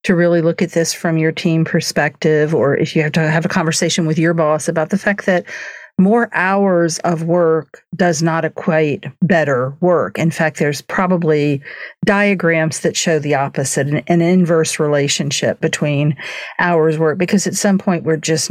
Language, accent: English, American